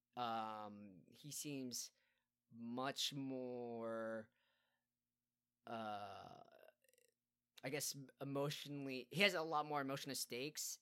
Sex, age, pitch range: male, 20-39, 120-150 Hz